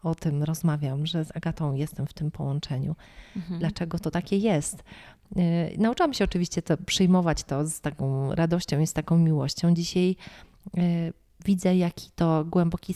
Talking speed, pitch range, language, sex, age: 145 wpm, 165-185 Hz, Polish, female, 30-49